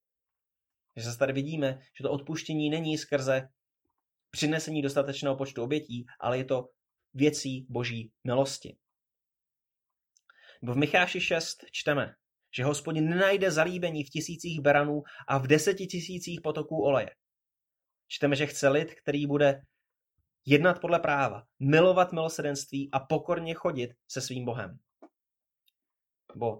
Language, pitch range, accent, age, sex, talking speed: Czech, 135-160 Hz, native, 20-39, male, 125 wpm